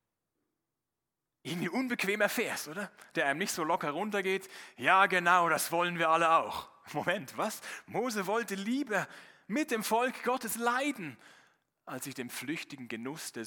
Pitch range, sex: 130-200 Hz, male